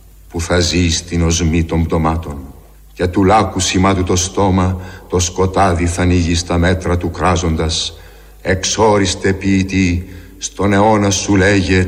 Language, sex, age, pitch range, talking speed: Greek, male, 60-79, 80-95 Hz, 135 wpm